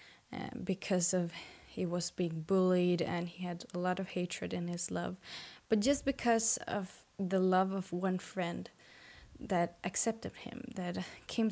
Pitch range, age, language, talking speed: 175-215 Hz, 10-29, English, 160 wpm